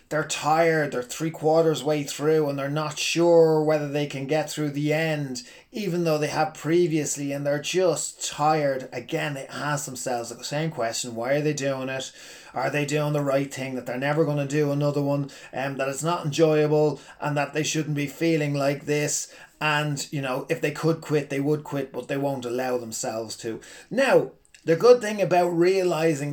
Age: 30-49